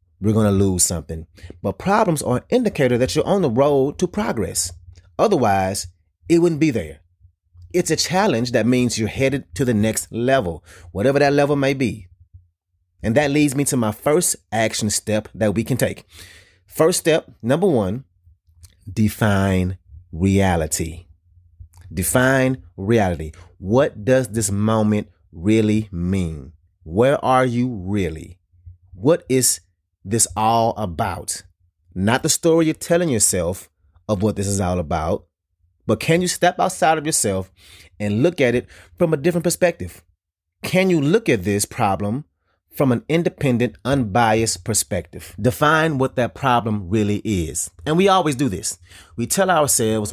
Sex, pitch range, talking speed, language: male, 90-130 Hz, 150 wpm, English